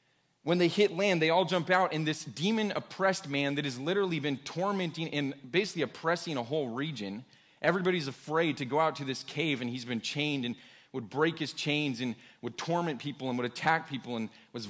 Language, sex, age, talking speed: English, male, 30-49, 205 wpm